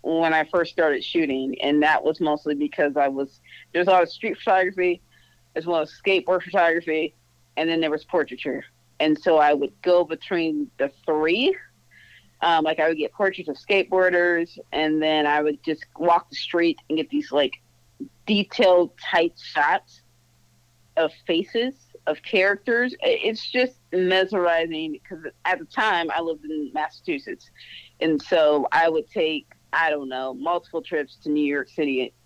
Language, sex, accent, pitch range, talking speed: English, female, American, 150-180 Hz, 165 wpm